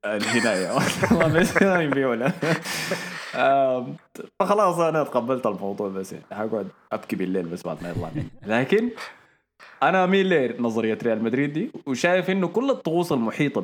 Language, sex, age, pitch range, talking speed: Arabic, male, 20-39, 100-160 Hz, 115 wpm